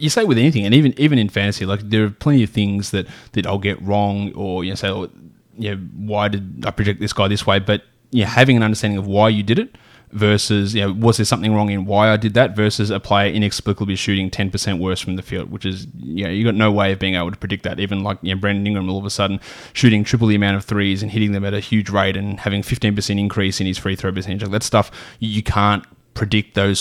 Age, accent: 20-39, Australian